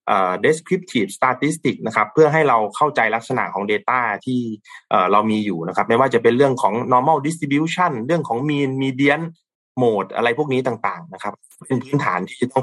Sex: male